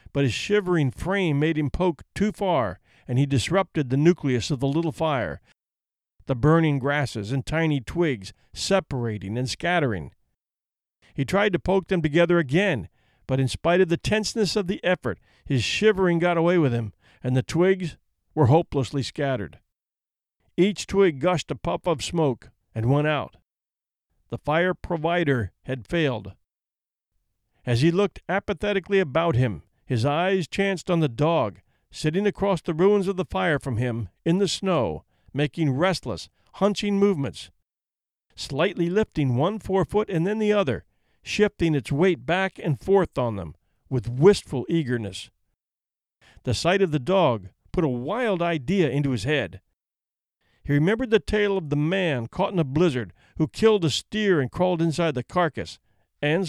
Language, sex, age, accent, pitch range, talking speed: English, male, 50-69, American, 125-185 Hz, 160 wpm